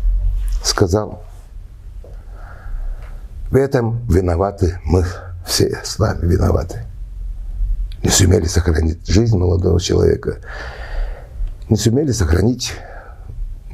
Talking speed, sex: 80 wpm, male